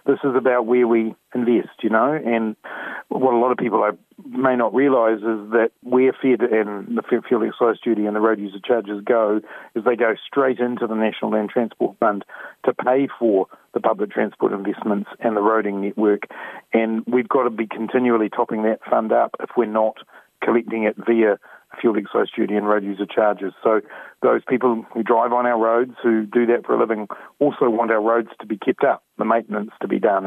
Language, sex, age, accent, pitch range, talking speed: English, male, 40-59, Australian, 105-120 Hz, 210 wpm